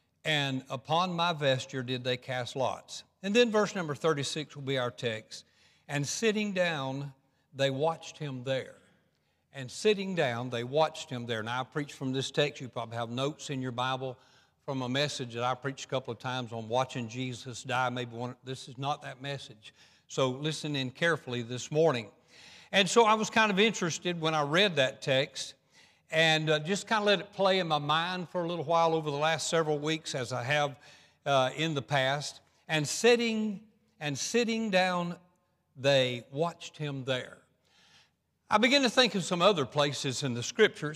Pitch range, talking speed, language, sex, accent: 135-180 Hz, 190 wpm, English, male, American